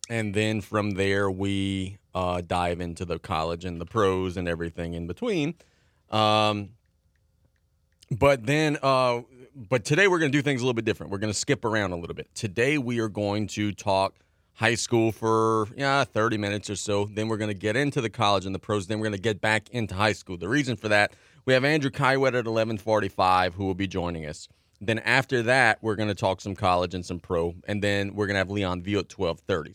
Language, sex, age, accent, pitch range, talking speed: English, male, 30-49, American, 95-115 Hz, 225 wpm